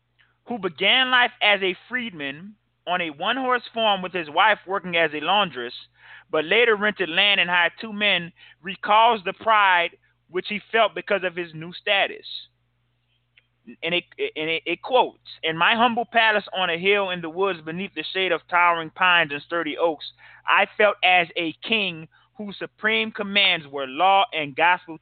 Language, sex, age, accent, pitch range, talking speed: English, male, 30-49, American, 160-205 Hz, 175 wpm